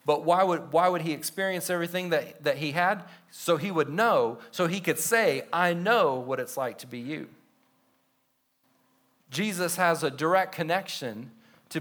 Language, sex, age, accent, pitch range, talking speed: English, male, 40-59, American, 130-175 Hz, 170 wpm